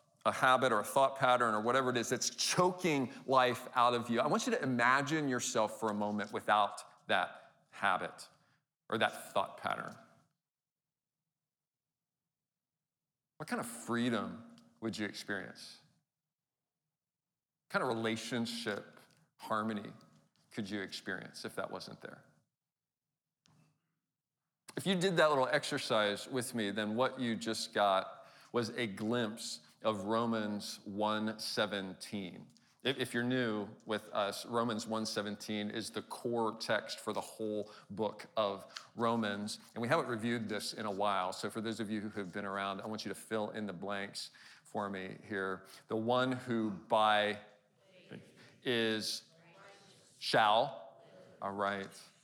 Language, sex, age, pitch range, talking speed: English, male, 40-59, 105-145 Hz, 145 wpm